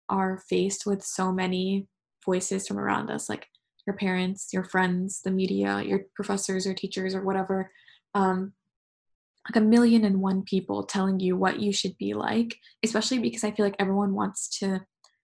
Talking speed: 175 wpm